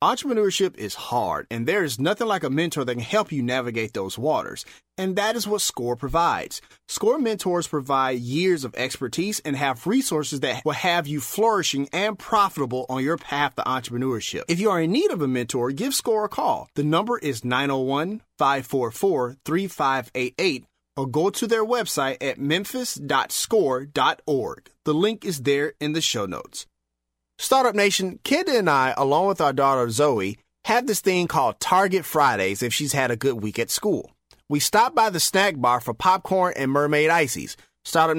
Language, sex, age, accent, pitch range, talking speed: English, male, 30-49, American, 130-195 Hz, 175 wpm